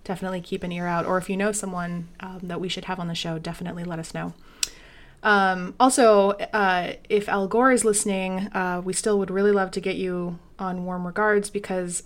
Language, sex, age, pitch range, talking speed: English, female, 20-39, 180-220 Hz, 215 wpm